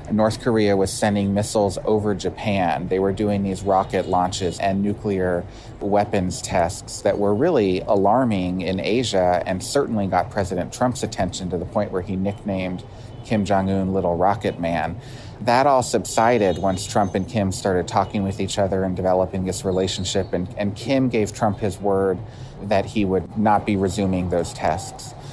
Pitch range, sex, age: 95-105 Hz, male, 30-49